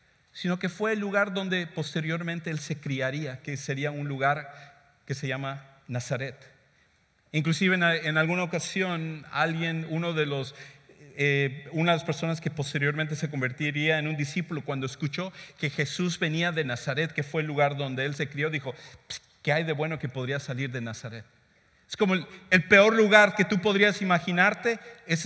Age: 40-59